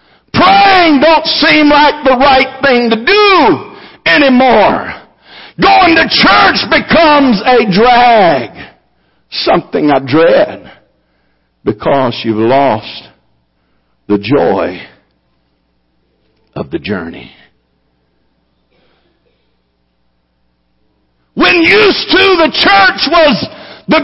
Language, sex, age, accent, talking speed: English, male, 60-79, American, 85 wpm